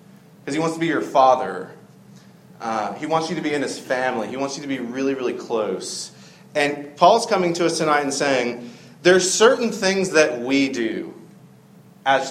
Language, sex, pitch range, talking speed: English, male, 120-160 Hz, 190 wpm